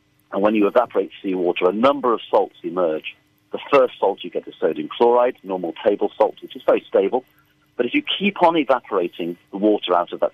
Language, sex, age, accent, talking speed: English, male, 40-59, British, 210 wpm